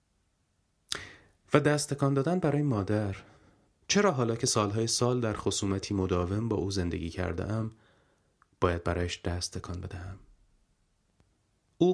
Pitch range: 90-110 Hz